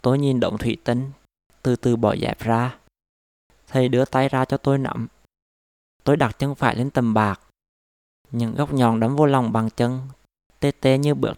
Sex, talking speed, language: male, 190 wpm, Vietnamese